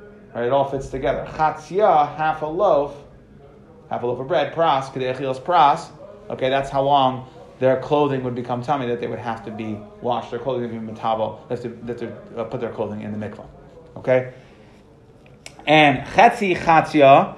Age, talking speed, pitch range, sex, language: 30-49, 175 wpm, 125-155 Hz, male, English